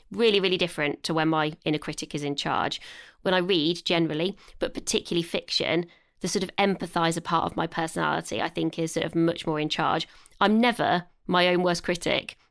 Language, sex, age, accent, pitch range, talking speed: English, female, 20-39, British, 165-195 Hz, 195 wpm